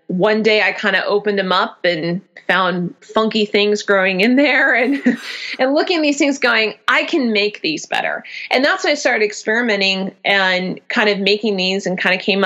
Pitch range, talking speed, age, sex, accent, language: 190-240 Hz, 200 wpm, 30-49, female, American, English